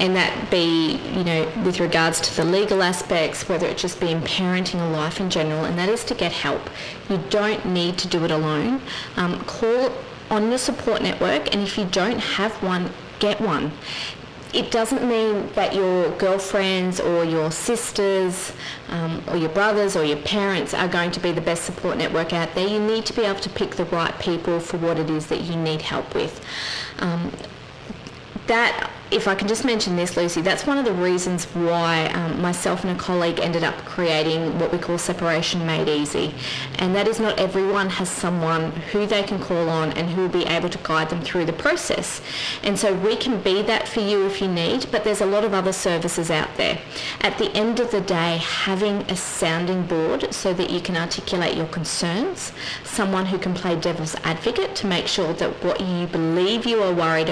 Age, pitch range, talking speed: 30-49, 165-200 Hz, 205 wpm